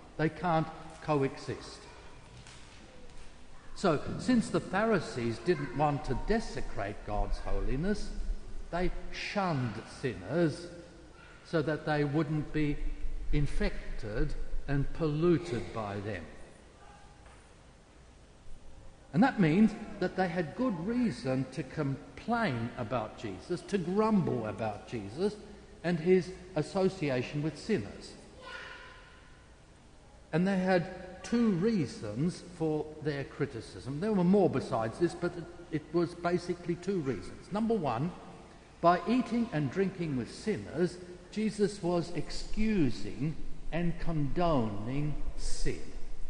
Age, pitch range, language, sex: 60-79, 145-195 Hz, English, male